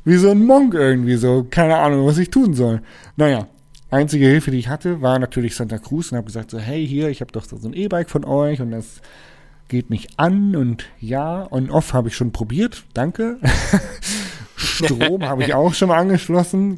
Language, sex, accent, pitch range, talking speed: German, male, German, 130-175 Hz, 205 wpm